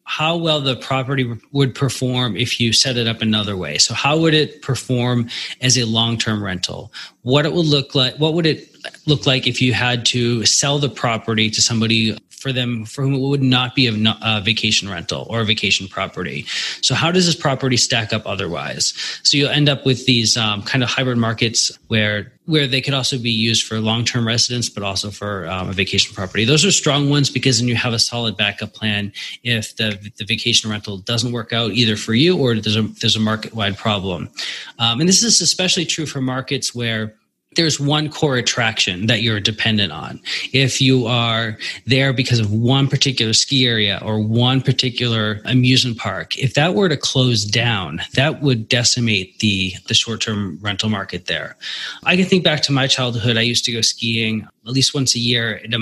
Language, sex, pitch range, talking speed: English, male, 110-135 Hz, 205 wpm